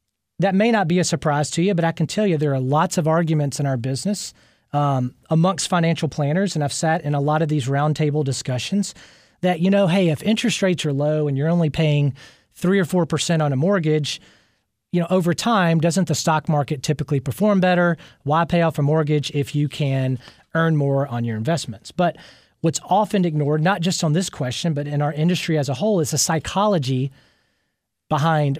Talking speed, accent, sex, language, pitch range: 210 wpm, American, male, English, 140-175 Hz